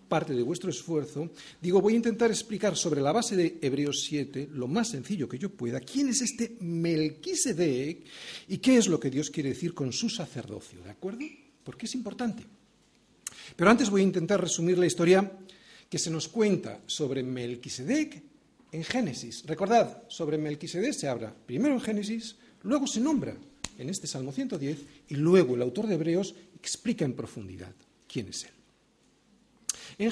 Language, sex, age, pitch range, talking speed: Spanish, male, 40-59, 145-230 Hz, 170 wpm